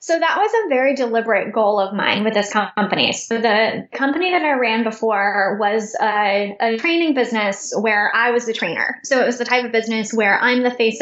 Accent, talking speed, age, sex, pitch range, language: American, 220 wpm, 10-29, female, 210-260 Hz, English